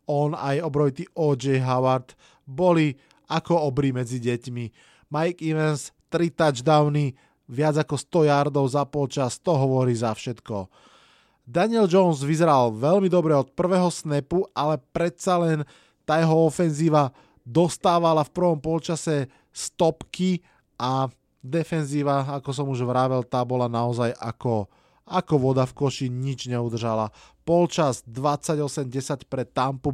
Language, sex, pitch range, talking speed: Slovak, male, 130-165 Hz, 125 wpm